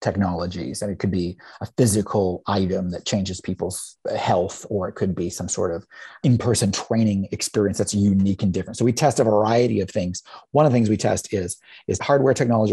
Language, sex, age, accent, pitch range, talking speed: English, male, 30-49, American, 105-135 Hz, 205 wpm